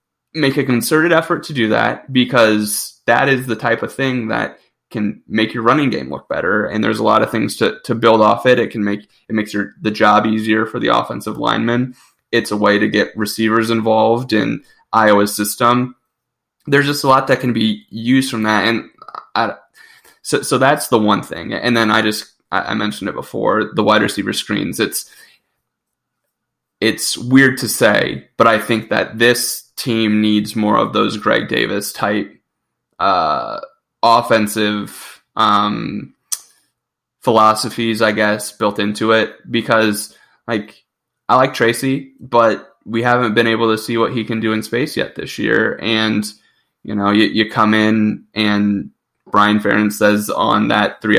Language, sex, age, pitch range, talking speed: English, male, 20-39, 105-120 Hz, 175 wpm